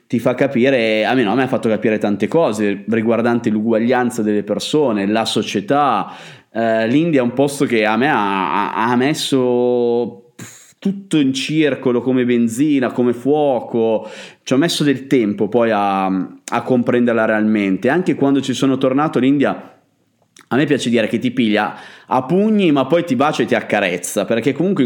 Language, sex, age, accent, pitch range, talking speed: Italian, male, 30-49, native, 110-140 Hz, 170 wpm